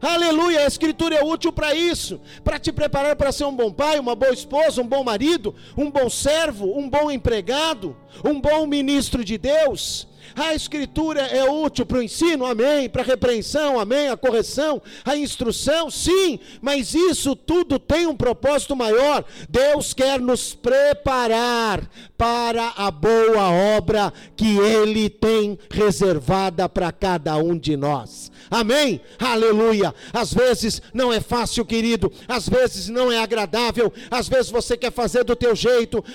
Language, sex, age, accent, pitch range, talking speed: Portuguese, male, 50-69, Brazilian, 205-270 Hz, 155 wpm